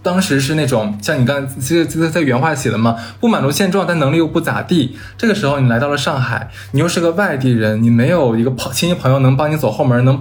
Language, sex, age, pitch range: Chinese, male, 20-39, 115-155 Hz